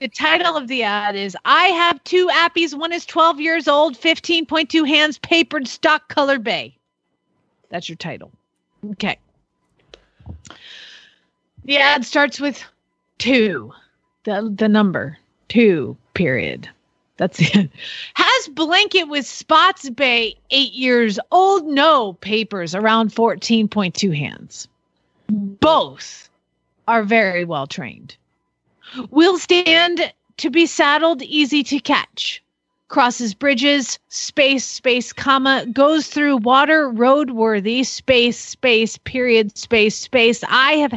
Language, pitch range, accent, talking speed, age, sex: English, 215-300 Hz, American, 115 wpm, 40-59, female